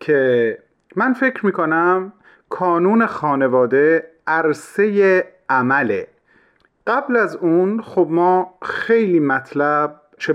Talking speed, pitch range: 100 wpm, 130-185 Hz